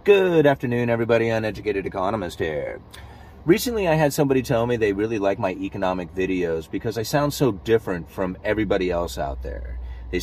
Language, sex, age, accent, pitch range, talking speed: English, male, 30-49, American, 100-135 Hz, 170 wpm